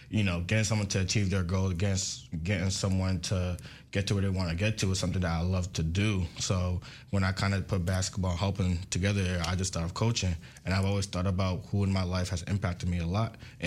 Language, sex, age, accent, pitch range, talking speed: English, male, 20-39, American, 90-100 Hz, 240 wpm